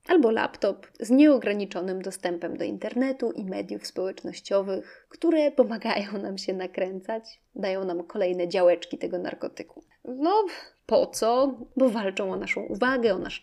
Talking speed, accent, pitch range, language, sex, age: 140 wpm, native, 185-235 Hz, Polish, female, 20-39